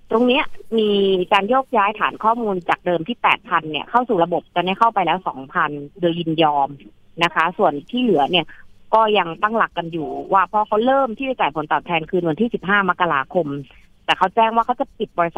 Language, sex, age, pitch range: Thai, female, 30-49, 170-225 Hz